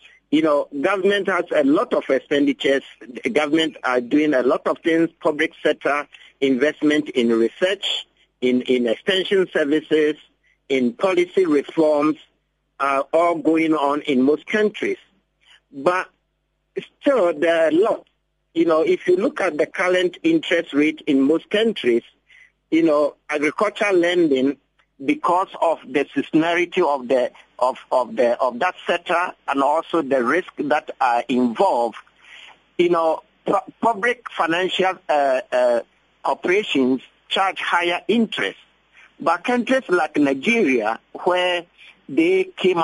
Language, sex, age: English, male, 50-69